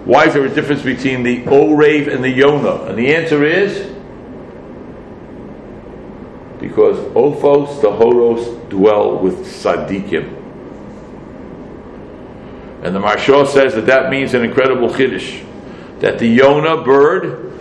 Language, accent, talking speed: English, American, 130 wpm